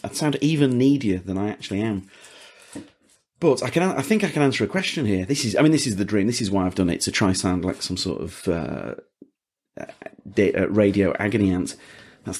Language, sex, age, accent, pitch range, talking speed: English, male, 40-59, British, 95-140 Hz, 220 wpm